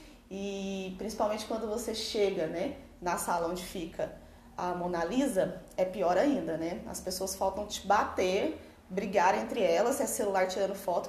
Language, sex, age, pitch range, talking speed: Portuguese, female, 20-39, 195-270 Hz, 155 wpm